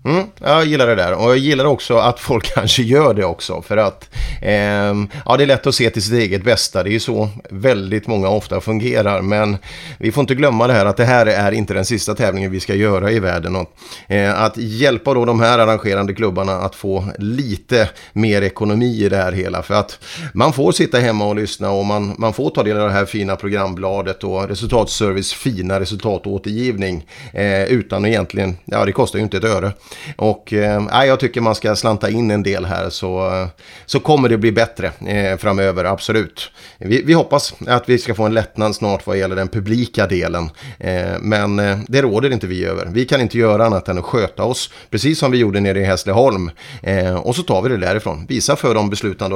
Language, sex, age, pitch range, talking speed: Swedish, male, 30-49, 95-115 Hz, 210 wpm